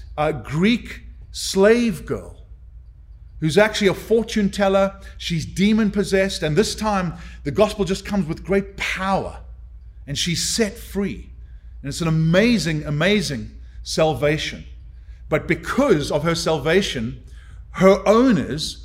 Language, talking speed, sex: English, 120 wpm, male